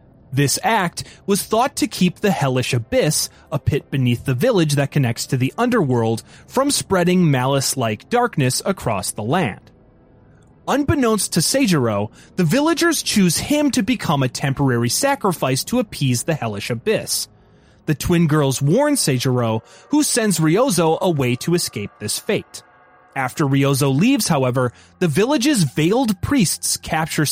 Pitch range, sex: 125-190 Hz, male